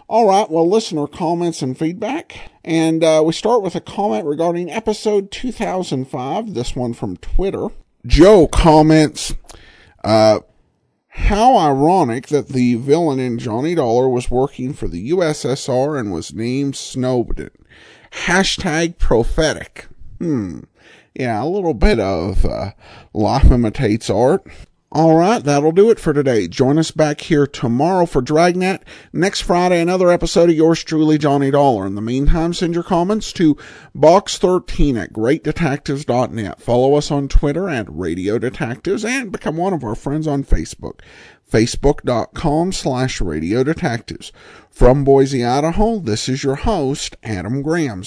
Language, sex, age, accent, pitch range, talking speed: English, male, 50-69, American, 125-170 Hz, 145 wpm